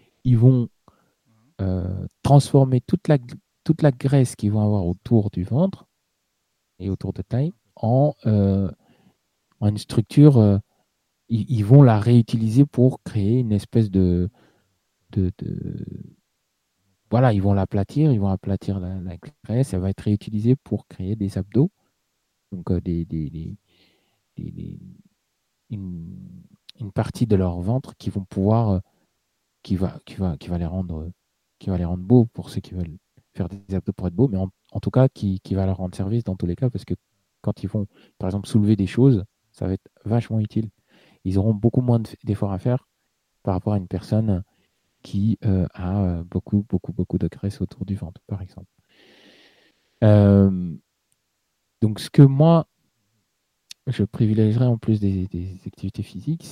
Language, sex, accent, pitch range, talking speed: French, male, French, 95-120 Hz, 170 wpm